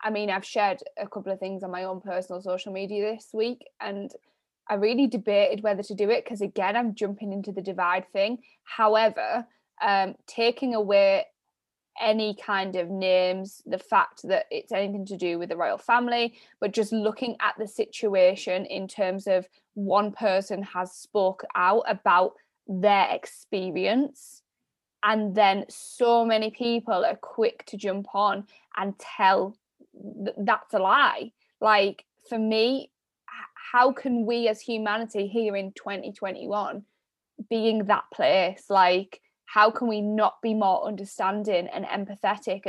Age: 10-29